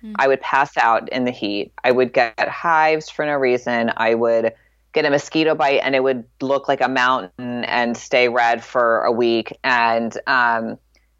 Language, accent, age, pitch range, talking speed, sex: English, American, 30-49, 115-155 Hz, 190 wpm, female